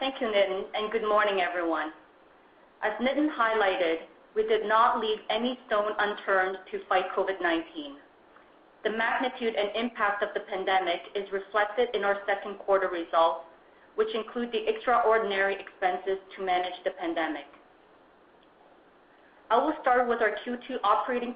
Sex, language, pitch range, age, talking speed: female, English, 190-230 Hz, 30-49, 140 wpm